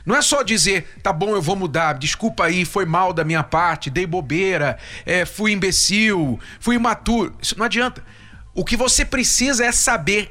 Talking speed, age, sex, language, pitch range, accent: 180 wpm, 40-59, male, Portuguese, 145-225 Hz, Brazilian